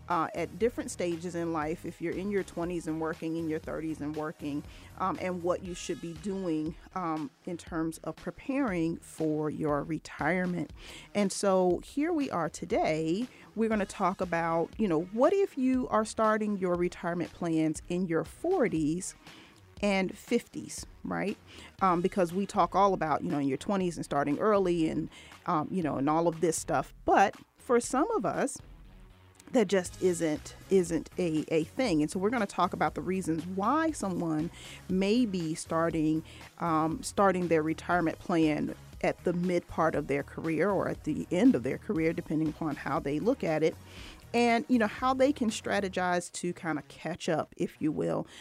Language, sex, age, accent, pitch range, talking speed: English, female, 40-59, American, 155-195 Hz, 185 wpm